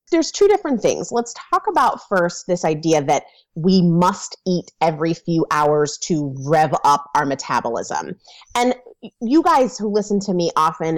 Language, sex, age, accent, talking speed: English, female, 30-49, American, 165 wpm